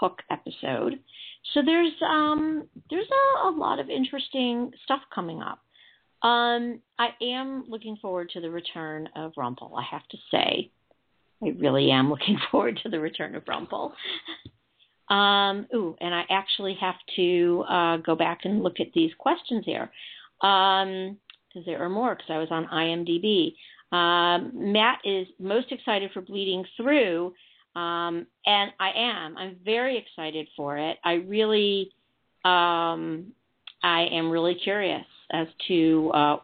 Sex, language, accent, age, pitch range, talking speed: female, English, American, 50-69, 170-240 Hz, 150 wpm